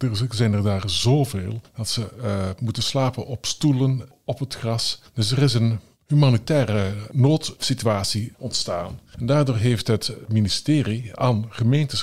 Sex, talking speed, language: male, 145 wpm, Dutch